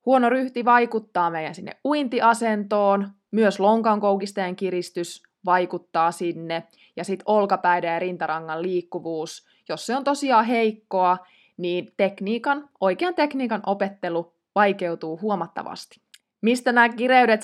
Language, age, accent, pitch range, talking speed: Finnish, 20-39, native, 175-235 Hz, 110 wpm